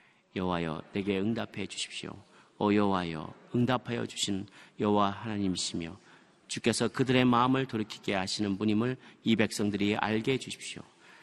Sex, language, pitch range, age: male, Korean, 95-130 Hz, 40-59